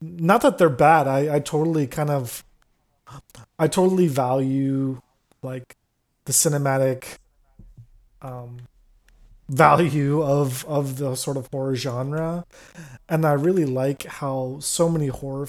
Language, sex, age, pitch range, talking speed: English, male, 20-39, 125-145 Hz, 125 wpm